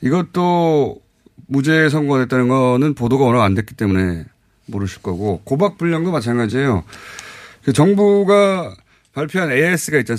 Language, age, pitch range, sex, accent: Korean, 30-49, 110-165 Hz, male, native